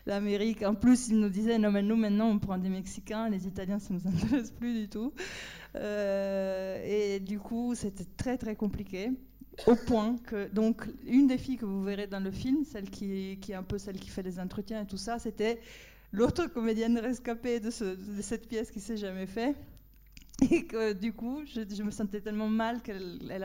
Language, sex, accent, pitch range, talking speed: French, female, French, 195-230 Hz, 220 wpm